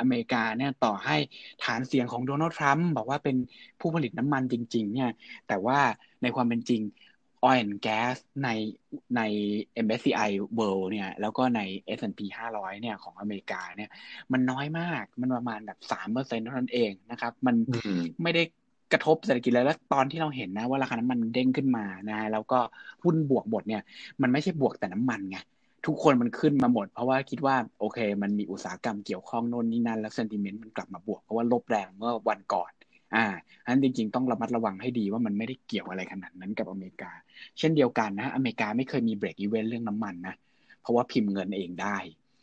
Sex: male